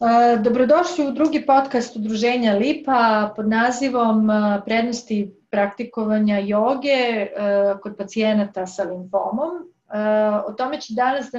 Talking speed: 105 wpm